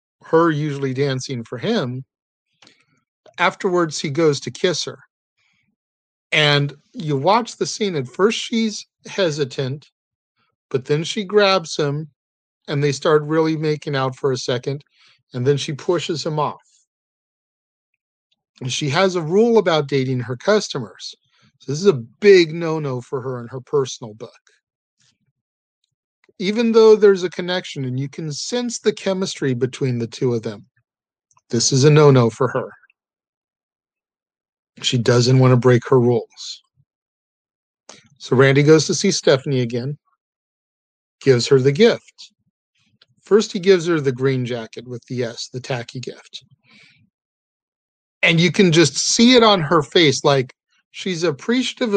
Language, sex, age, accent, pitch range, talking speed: English, male, 50-69, American, 130-185 Hz, 145 wpm